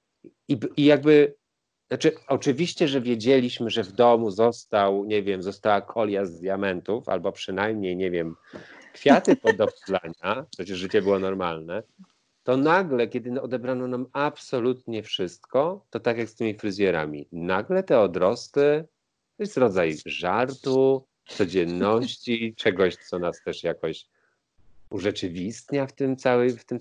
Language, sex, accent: Polish, male, native